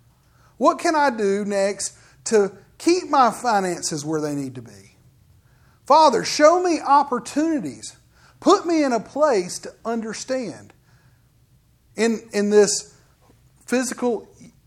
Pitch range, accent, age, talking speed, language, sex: 175-275 Hz, American, 40-59, 120 wpm, English, male